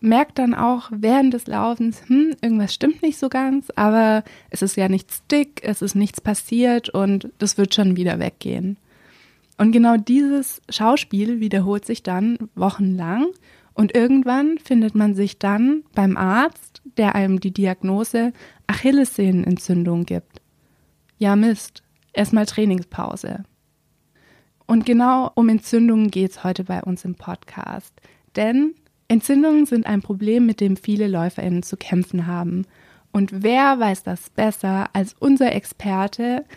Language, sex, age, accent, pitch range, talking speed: German, female, 20-39, German, 195-235 Hz, 140 wpm